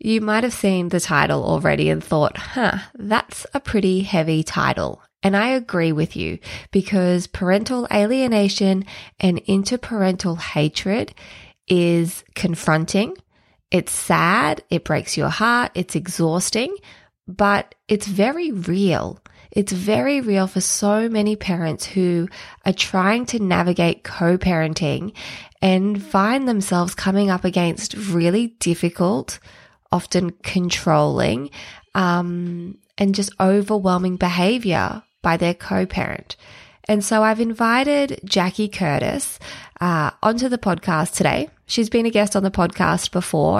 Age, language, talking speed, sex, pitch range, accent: 20-39, English, 125 wpm, female, 170-205 Hz, Australian